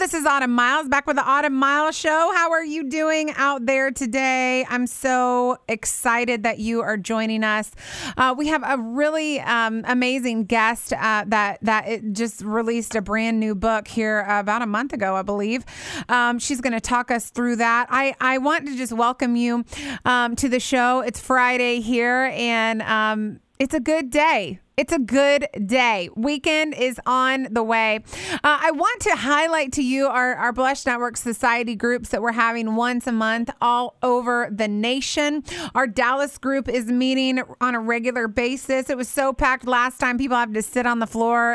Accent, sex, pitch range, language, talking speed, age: American, female, 230-270 Hz, English, 190 wpm, 30-49